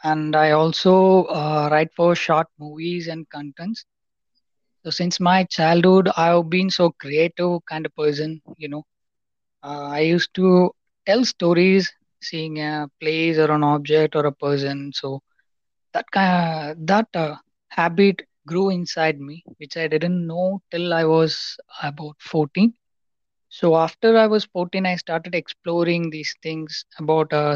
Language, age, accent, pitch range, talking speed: Hindi, 20-39, native, 150-180 Hz, 150 wpm